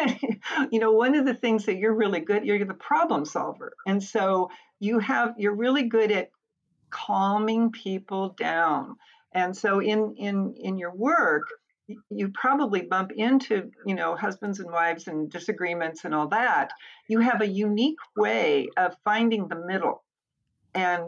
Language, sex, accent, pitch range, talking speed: English, female, American, 185-235 Hz, 160 wpm